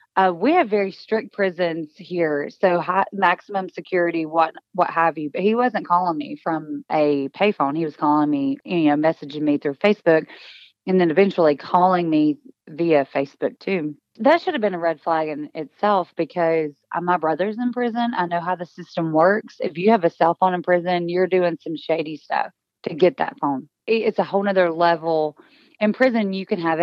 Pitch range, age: 155-190 Hz, 20-39